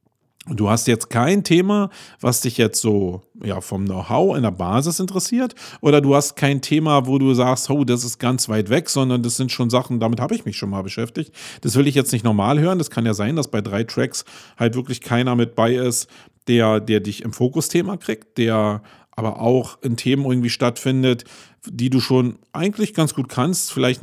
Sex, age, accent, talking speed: male, 40-59, German, 205 wpm